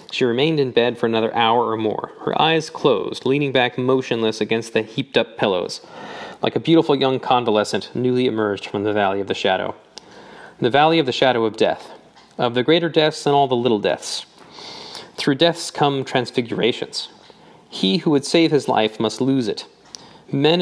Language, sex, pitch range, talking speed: English, male, 115-140 Hz, 180 wpm